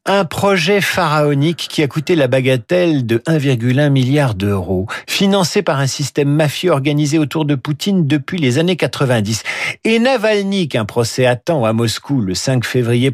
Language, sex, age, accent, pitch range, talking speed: French, male, 50-69, French, 130-185 Hz, 160 wpm